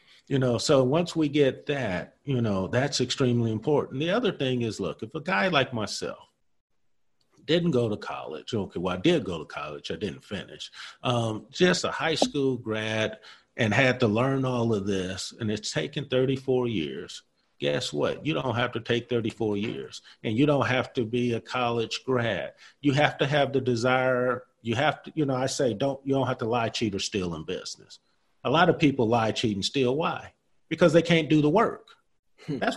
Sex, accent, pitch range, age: male, American, 120-170 Hz, 40-59